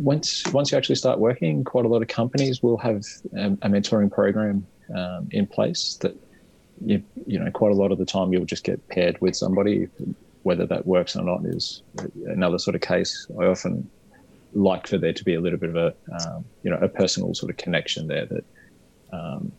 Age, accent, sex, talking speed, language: 20-39, Australian, male, 210 wpm, English